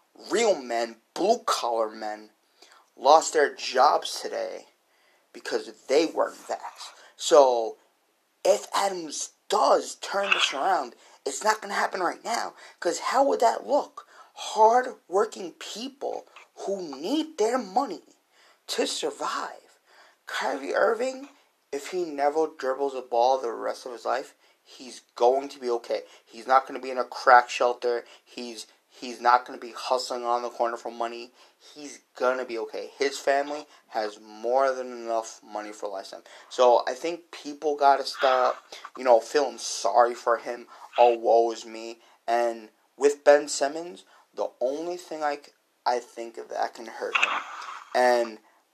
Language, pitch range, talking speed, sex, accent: English, 120-150 Hz, 155 wpm, male, American